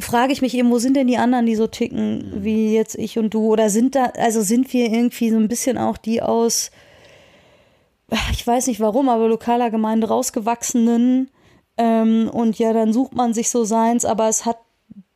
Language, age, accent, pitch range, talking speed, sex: German, 20-39, German, 220-240 Hz, 200 wpm, female